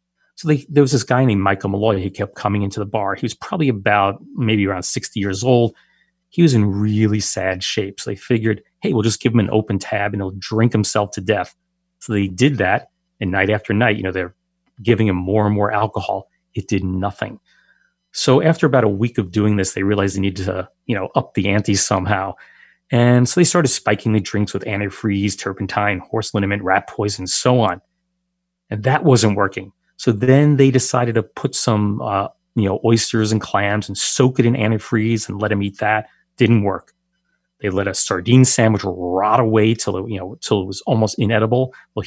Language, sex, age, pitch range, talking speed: English, male, 30-49, 100-125 Hz, 210 wpm